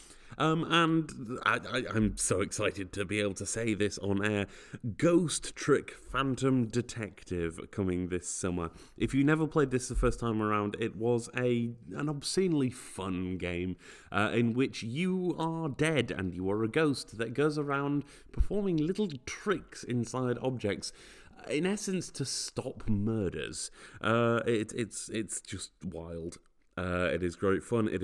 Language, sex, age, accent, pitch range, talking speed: English, male, 30-49, British, 100-150 Hz, 160 wpm